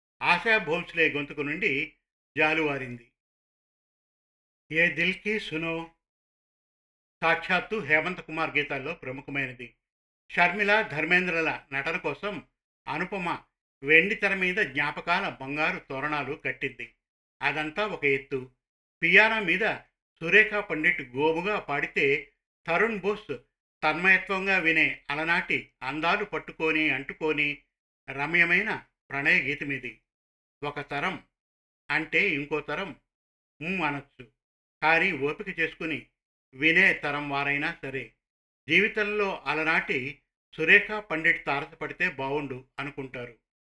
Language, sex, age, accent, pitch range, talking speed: Telugu, male, 50-69, native, 140-175 Hz, 85 wpm